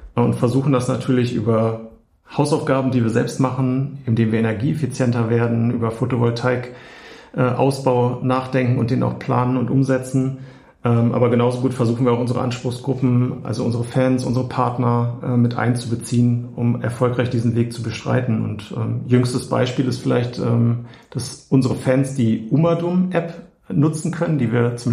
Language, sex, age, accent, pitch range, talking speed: German, male, 50-69, German, 120-130 Hz, 160 wpm